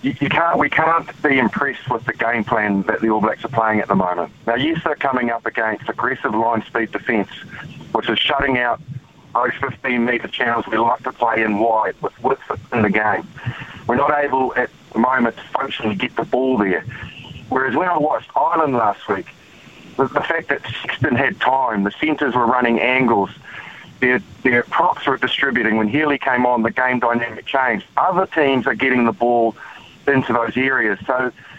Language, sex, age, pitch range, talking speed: English, male, 40-59, 115-140 Hz, 190 wpm